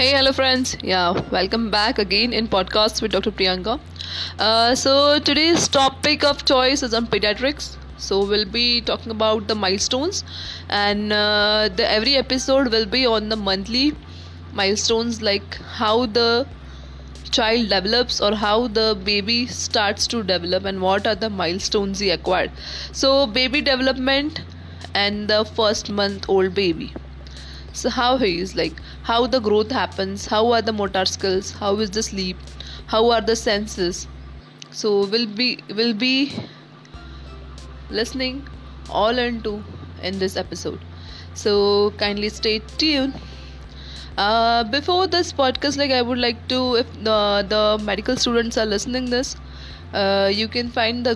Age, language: 20-39, English